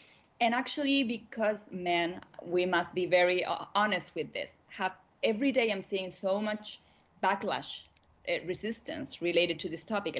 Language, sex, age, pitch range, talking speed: Swedish, female, 30-49, 170-205 Hz, 145 wpm